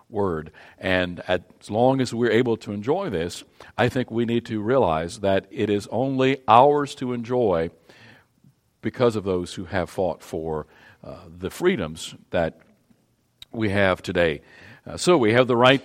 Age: 50-69